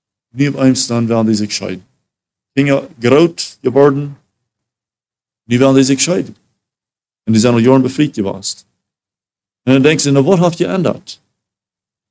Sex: male